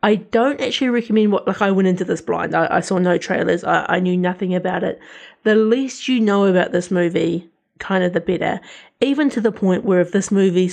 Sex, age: female, 30-49